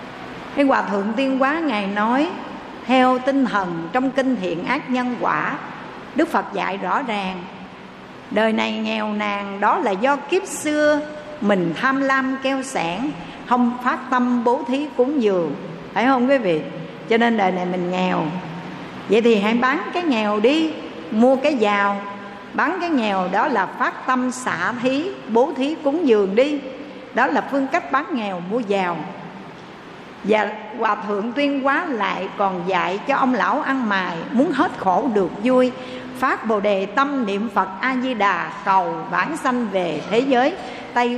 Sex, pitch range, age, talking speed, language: female, 200-270 Hz, 60-79, 170 wpm, Vietnamese